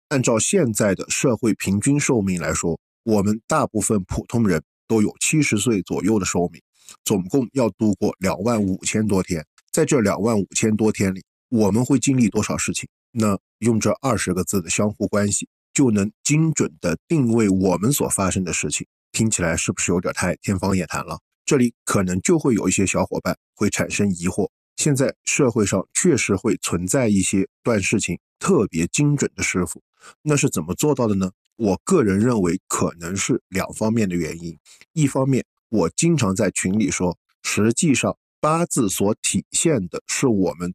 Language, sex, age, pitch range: Chinese, male, 50-69, 95-130 Hz